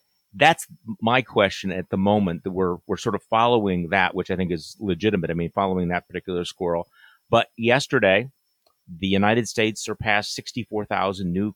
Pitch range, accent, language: 95-115 Hz, American, English